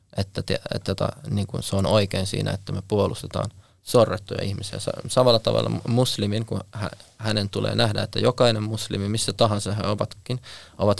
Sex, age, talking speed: male, 20-39, 140 wpm